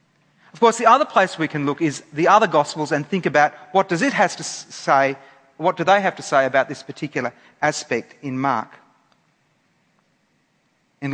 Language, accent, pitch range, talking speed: English, Australian, 140-205 Hz, 185 wpm